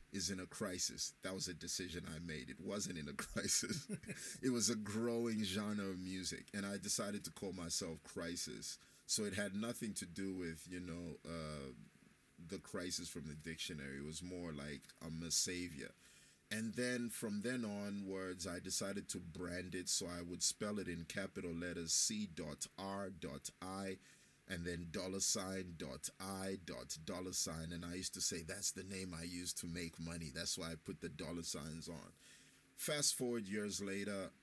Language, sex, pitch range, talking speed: English, male, 85-100 Hz, 185 wpm